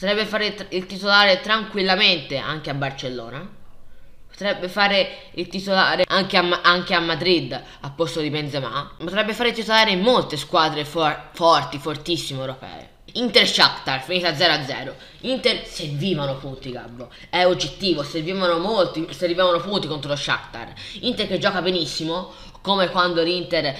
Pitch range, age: 150-190 Hz, 10-29